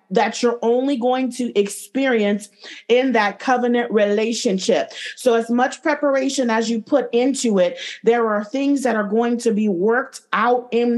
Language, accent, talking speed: English, American, 165 wpm